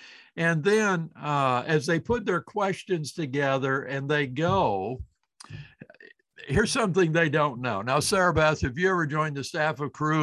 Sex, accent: male, American